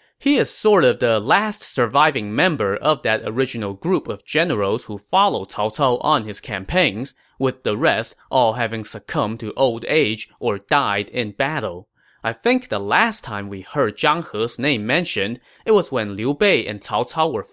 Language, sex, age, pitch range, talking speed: English, male, 20-39, 105-180 Hz, 185 wpm